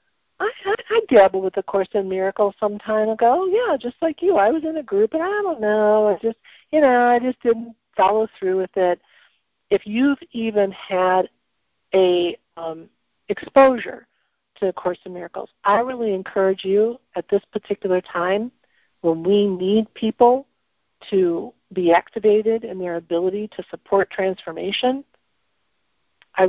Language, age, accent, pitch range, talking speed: English, 50-69, American, 185-230 Hz, 160 wpm